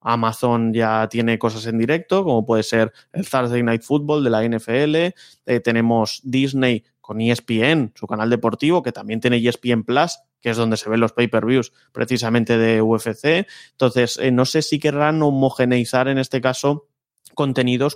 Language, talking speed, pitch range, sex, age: Spanish, 165 wpm, 115-140 Hz, male, 20-39